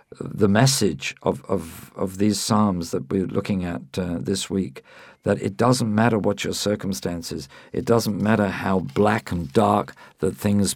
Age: 50-69